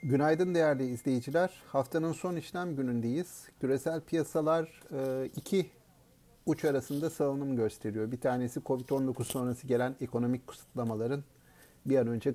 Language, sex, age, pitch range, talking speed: Turkish, male, 50-69, 120-140 Hz, 115 wpm